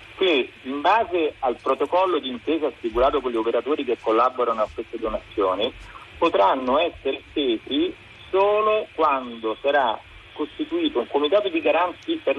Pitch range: 125-200 Hz